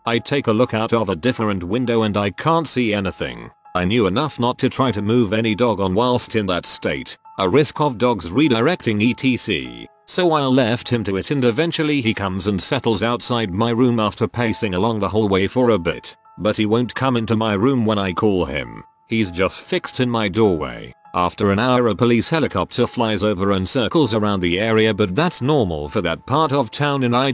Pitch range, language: 100-125 Hz, English